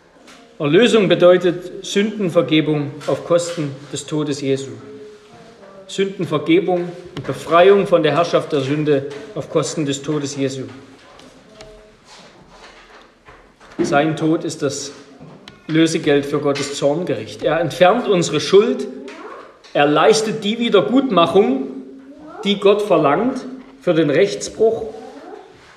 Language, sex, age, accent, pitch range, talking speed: German, male, 40-59, German, 145-205 Hz, 100 wpm